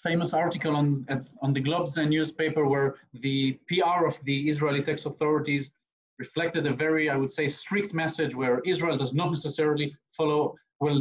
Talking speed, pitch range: 175 wpm, 140-165 Hz